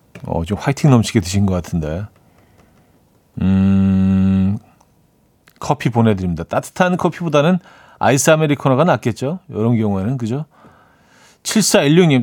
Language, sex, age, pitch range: Korean, male, 40-59, 100-145 Hz